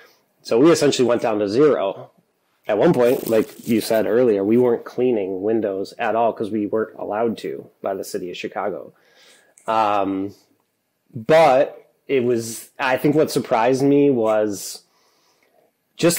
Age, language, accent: 20-39, English, American